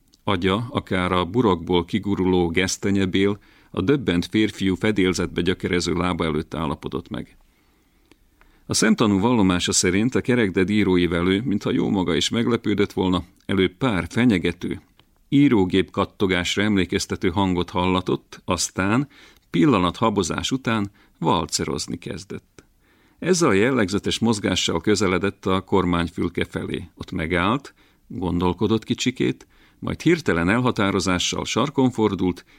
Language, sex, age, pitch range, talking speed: Hungarian, male, 50-69, 90-110 Hz, 110 wpm